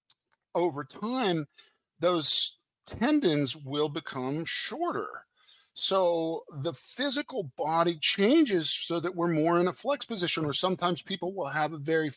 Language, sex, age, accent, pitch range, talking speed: English, male, 50-69, American, 140-180 Hz, 135 wpm